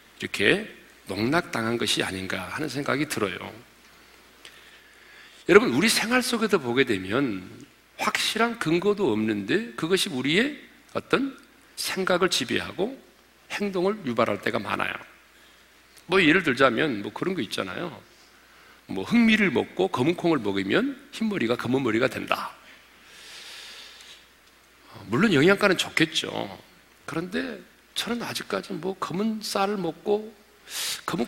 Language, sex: Korean, male